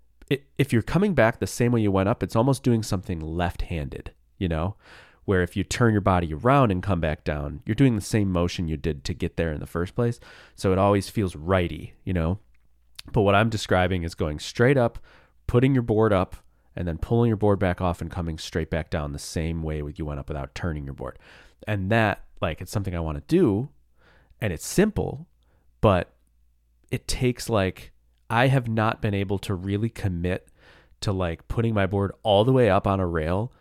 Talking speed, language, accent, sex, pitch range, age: 210 wpm, English, American, male, 85-115 Hz, 30-49